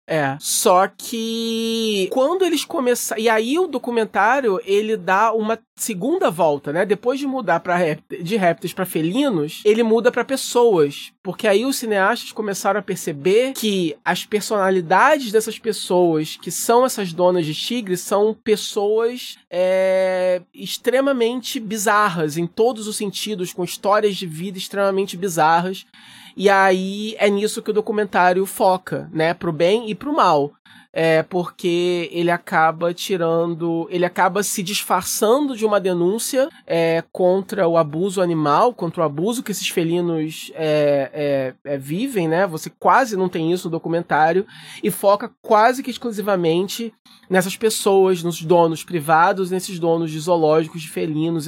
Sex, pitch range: male, 170-220 Hz